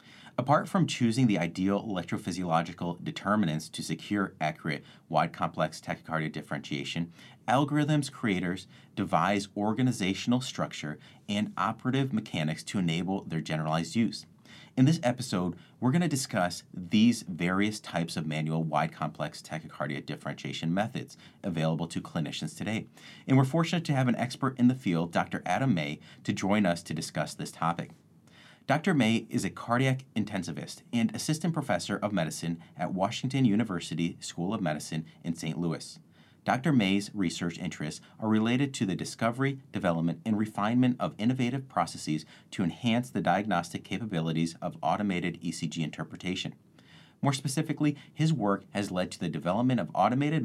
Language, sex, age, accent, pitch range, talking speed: English, male, 30-49, American, 85-130 Hz, 145 wpm